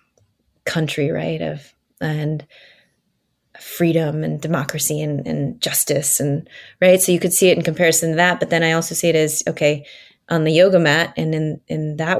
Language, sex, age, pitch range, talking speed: English, female, 20-39, 150-175 Hz, 180 wpm